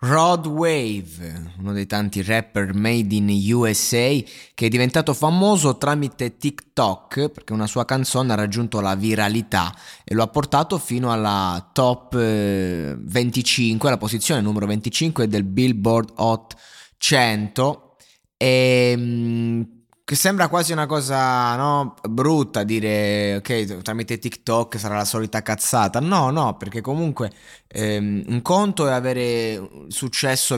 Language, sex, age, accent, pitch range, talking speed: Italian, male, 20-39, native, 110-140 Hz, 130 wpm